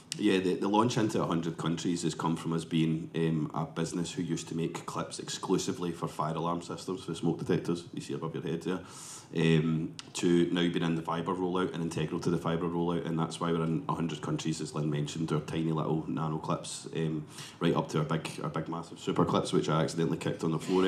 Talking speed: 235 wpm